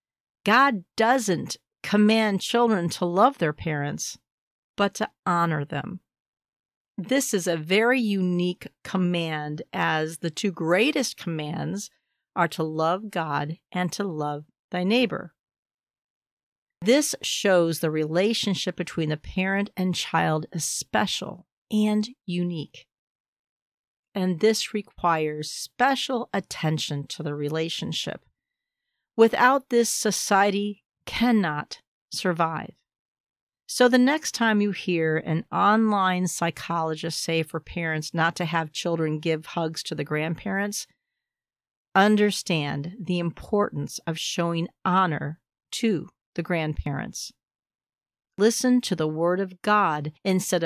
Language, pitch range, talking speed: English, 160-210 Hz, 115 wpm